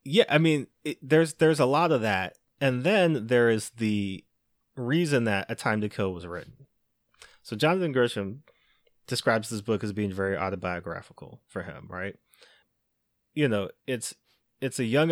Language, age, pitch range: English, 30-49, 100-145 Hz